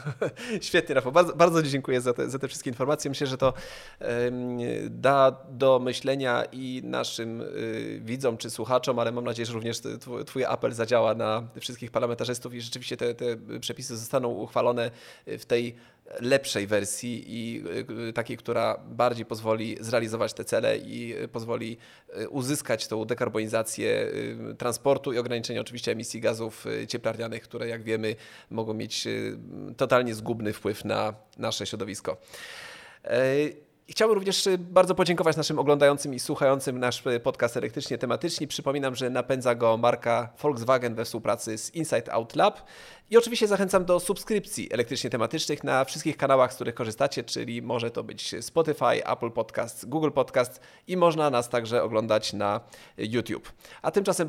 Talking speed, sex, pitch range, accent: 145 wpm, male, 115-150 Hz, native